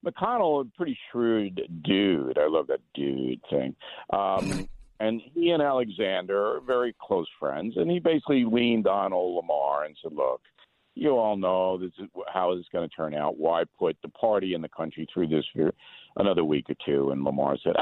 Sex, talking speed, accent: male, 190 wpm, American